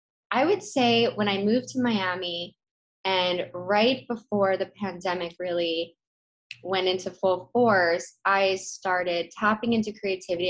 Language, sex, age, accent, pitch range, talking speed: English, female, 20-39, American, 180-215 Hz, 130 wpm